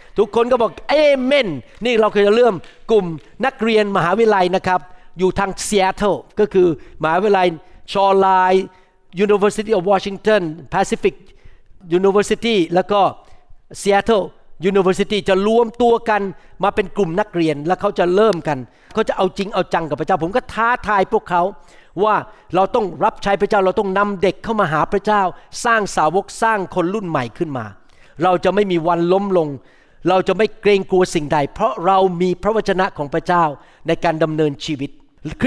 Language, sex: Thai, male